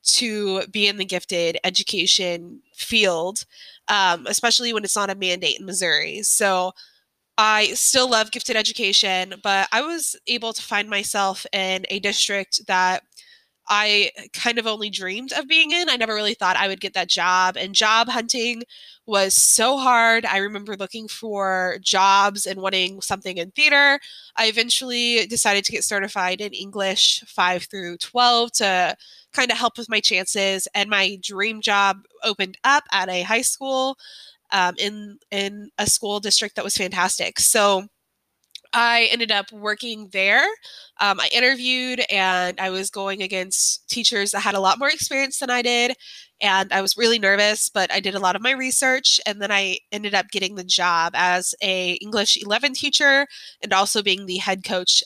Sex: female